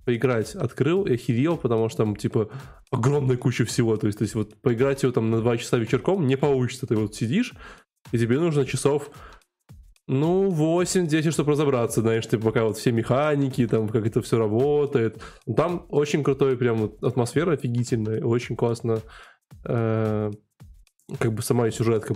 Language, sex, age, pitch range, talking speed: Russian, male, 20-39, 115-145 Hz, 170 wpm